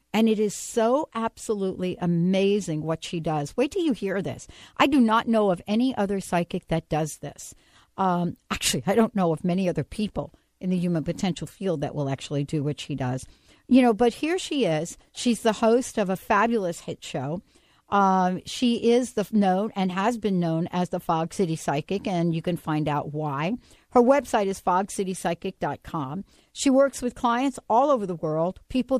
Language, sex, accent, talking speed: English, female, American, 190 wpm